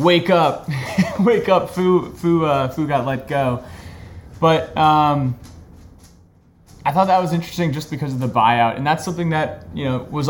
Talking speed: 170 wpm